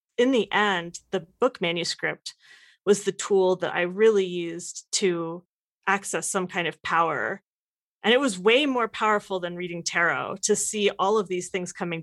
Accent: American